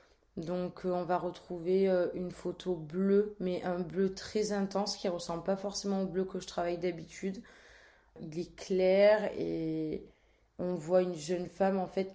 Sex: female